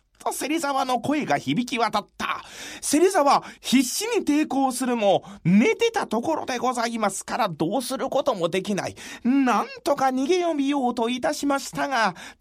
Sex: male